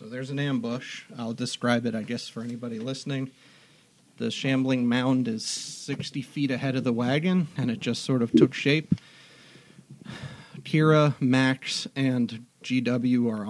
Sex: male